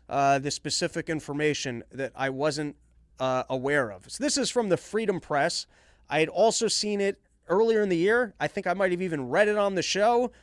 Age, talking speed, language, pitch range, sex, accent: 30-49, 205 wpm, English, 145-205 Hz, male, American